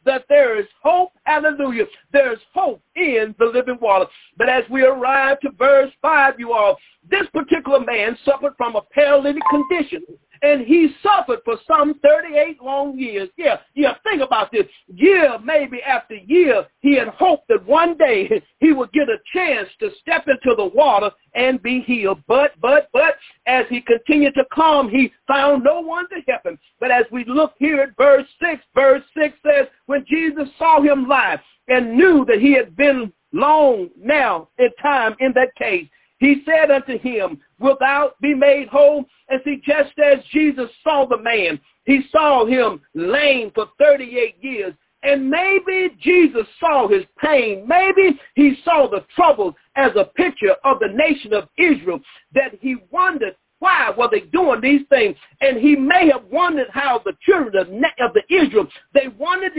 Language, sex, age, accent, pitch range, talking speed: English, male, 50-69, American, 260-330 Hz, 175 wpm